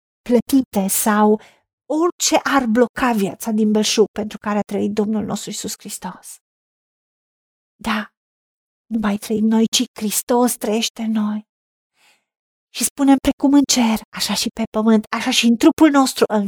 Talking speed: 145 wpm